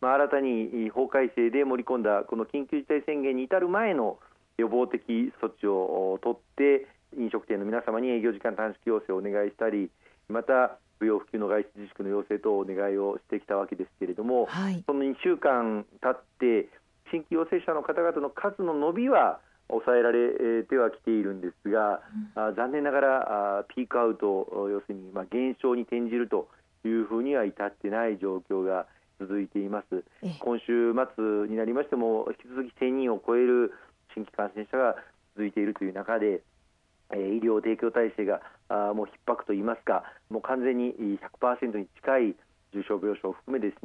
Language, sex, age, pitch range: Japanese, male, 40-59, 105-125 Hz